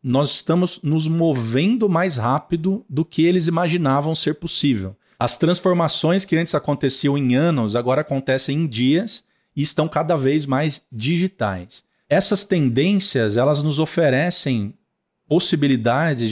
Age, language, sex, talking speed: 40-59, Portuguese, male, 125 wpm